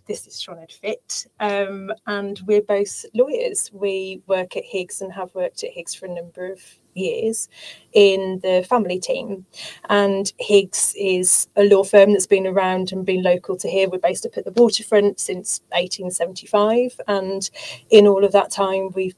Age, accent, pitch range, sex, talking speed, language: 30-49, British, 185-205 Hz, female, 180 wpm, English